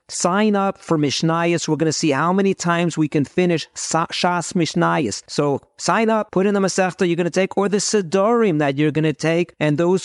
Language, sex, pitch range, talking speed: English, male, 135-170 Hz, 225 wpm